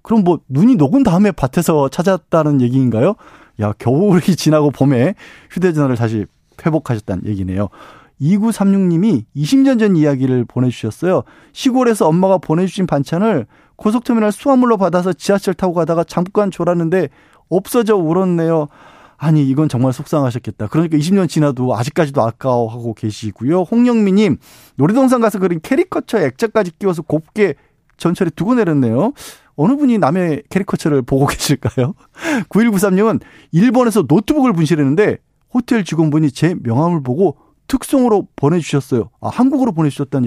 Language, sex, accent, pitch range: Korean, male, native, 135-205 Hz